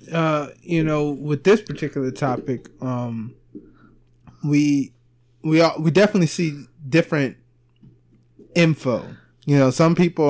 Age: 20-39